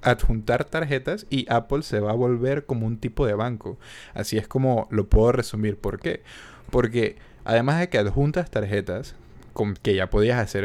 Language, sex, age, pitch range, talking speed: Spanish, male, 20-39, 110-155 Hz, 180 wpm